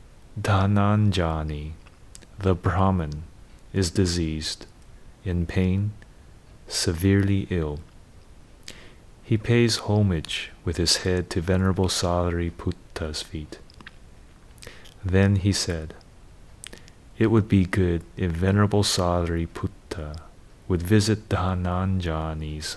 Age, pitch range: 30-49, 85-105 Hz